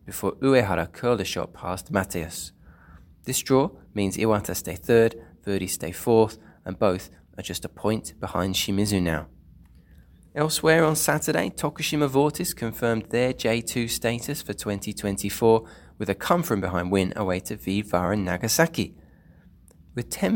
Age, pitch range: 20-39, 90-130 Hz